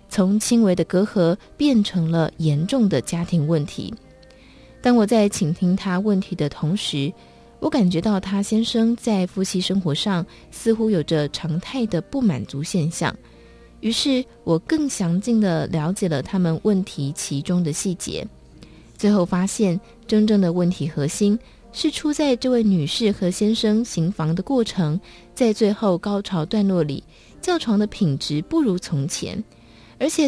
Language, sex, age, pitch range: Chinese, female, 20-39, 165-220 Hz